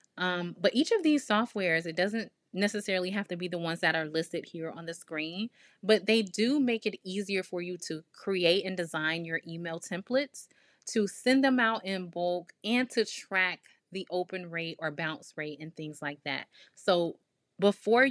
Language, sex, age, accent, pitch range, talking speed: English, female, 20-39, American, 170-215 Hz, 190 wpm